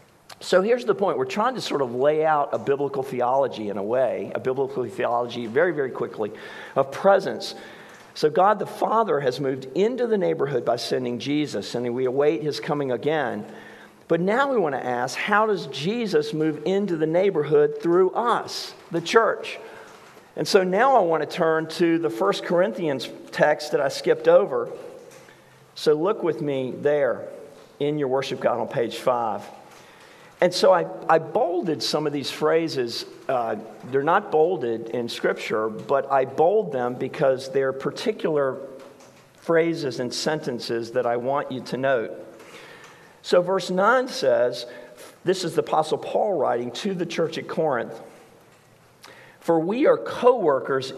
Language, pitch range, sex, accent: English, 135-215 Hz, male, American